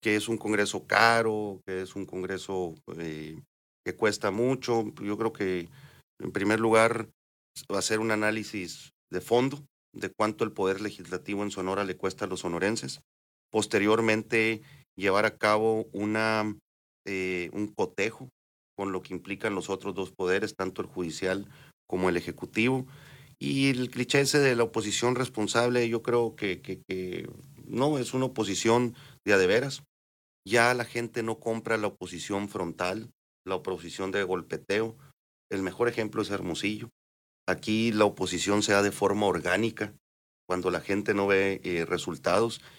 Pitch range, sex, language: 95-115 Hz, male, Spanish